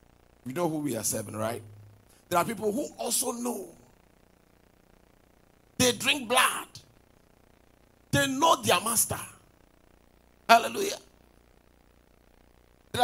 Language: English